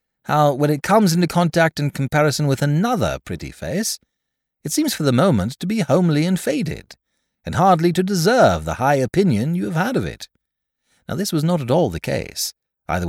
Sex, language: male, English